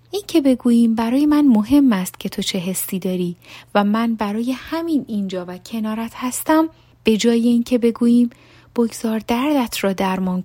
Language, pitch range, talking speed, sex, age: Persian, 195-255 Hz, 165 wpm, female, 30-49